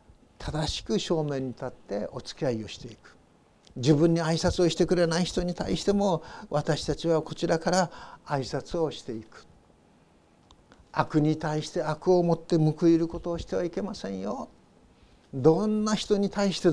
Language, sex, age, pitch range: Japanese, male, 60-79, 130-180 Hz